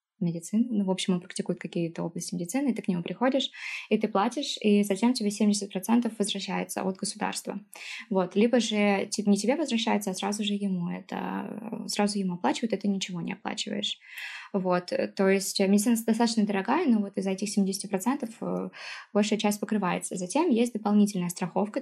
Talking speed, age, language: 165 wpm, 20-39, Russian